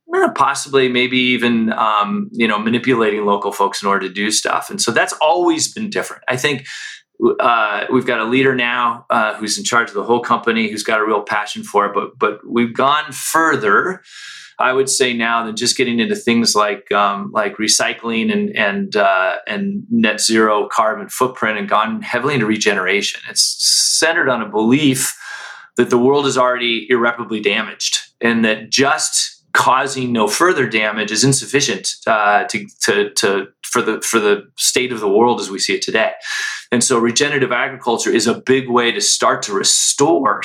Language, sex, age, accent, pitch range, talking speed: English, male, 30-49, American, 110-140 Hz, 185 wpm